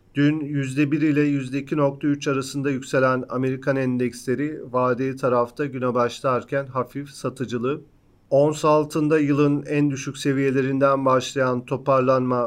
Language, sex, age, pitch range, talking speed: Turkish, male, 40-59, 125-145 Hz, 105 wpm